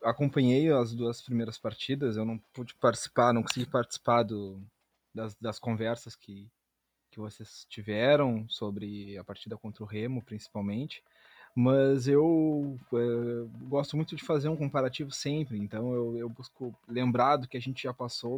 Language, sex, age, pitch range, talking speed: Portuguese, male, 20-39, 115-145 Hz, 155 wpm